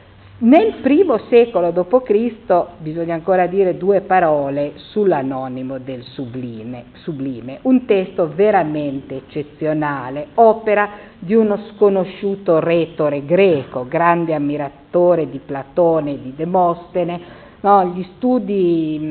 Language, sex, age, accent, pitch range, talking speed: Italian, female, 50-69, native, 155-210 Hz, 100 wpm